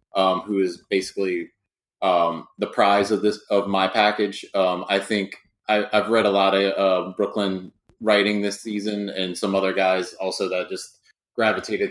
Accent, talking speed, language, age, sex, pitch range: American, 165 wpm, English, 20-39, male, 95-105 Hz